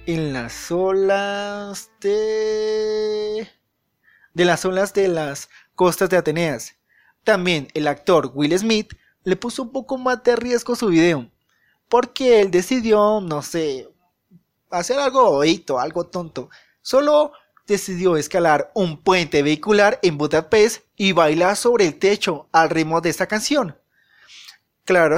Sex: male